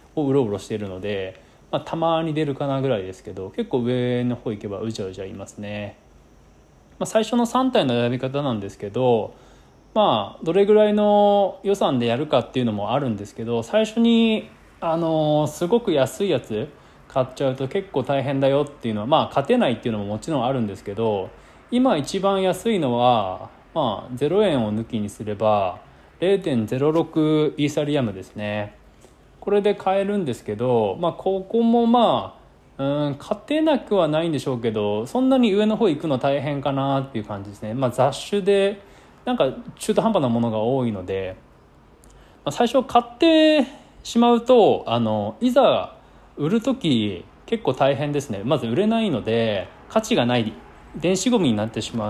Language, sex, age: Japanese, male, 20-39